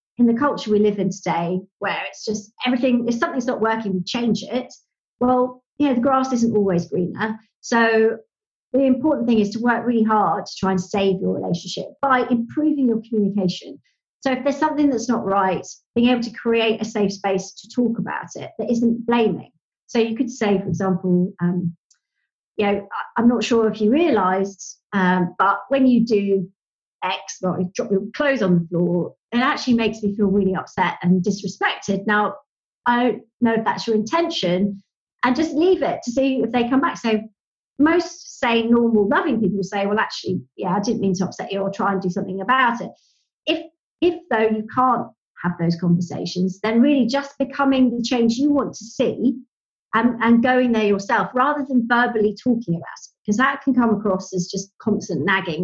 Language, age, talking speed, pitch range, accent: English, 40-59, 200 wpm, 195-255 Hz, British